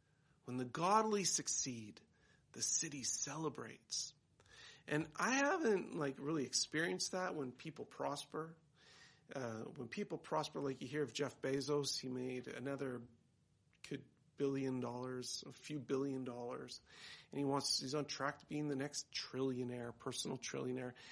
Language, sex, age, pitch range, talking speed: English, male, 40-59, 130-170 Hz, 135 wpm